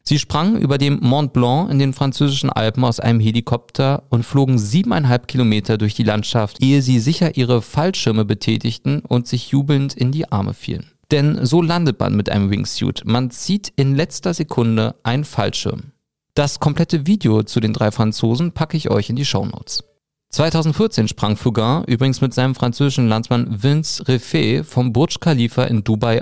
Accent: German